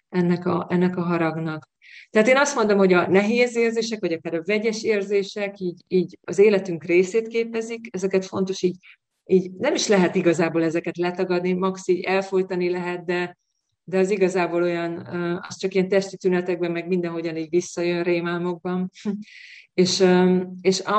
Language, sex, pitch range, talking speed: Hungarian, female, 175-200 Hz, 155 wpm